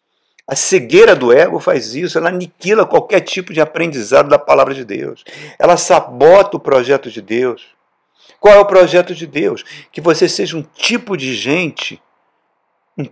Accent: Brazilian